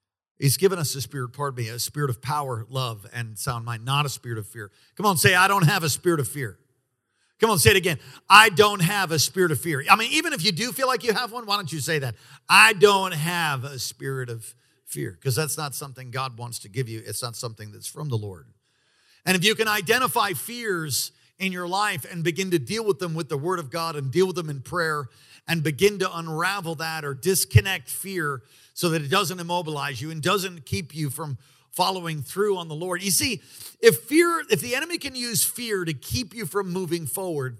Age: 50-69